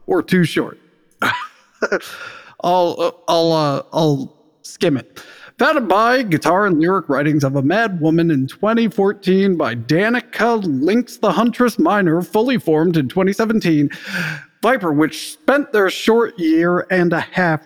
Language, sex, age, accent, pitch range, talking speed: English, male, 40-59, American, 160-220 Hz, 135 wpm